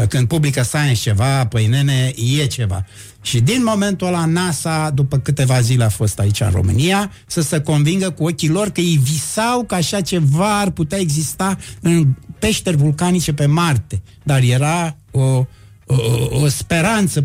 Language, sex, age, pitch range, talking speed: Romanian, male, 60-79, 120-170 Hz, 165 wpm